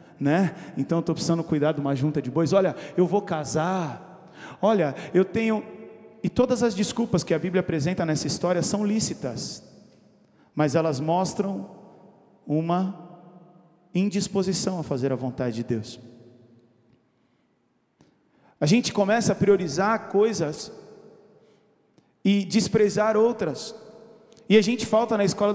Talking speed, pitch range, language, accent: 130 wpm, 170-220 Hz, Portuguese, Brazilian